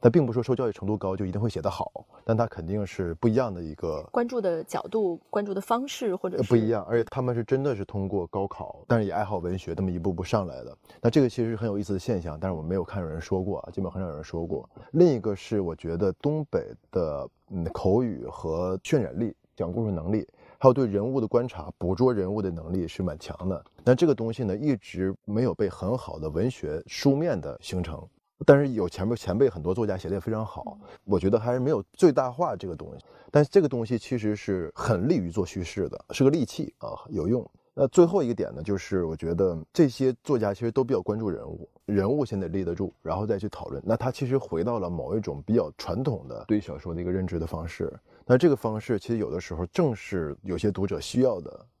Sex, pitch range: male, 95-125 Hz